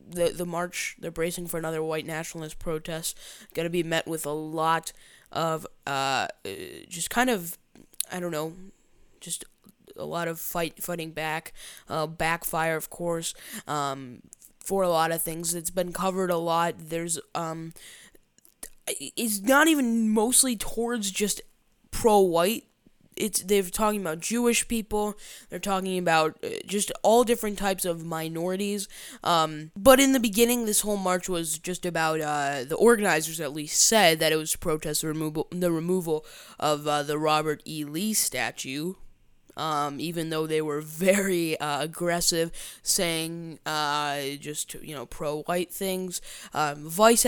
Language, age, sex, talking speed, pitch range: English, 10-29, female, 150 wpm, 160-195 Hz